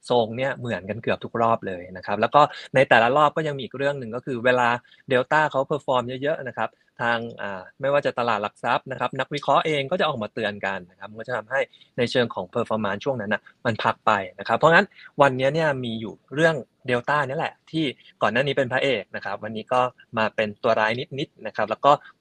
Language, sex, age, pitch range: Thai, male, 20-39, 110-145 Hz